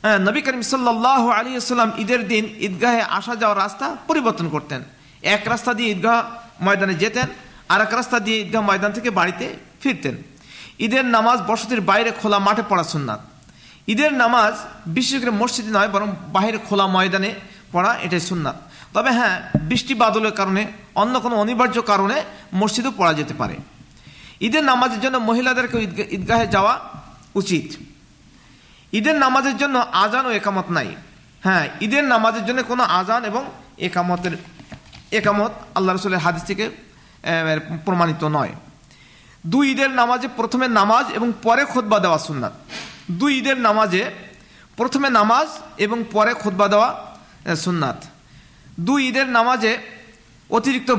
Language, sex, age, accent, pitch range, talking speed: Bengali, male, 50-69, native, 195-245 Hz, 135 wpm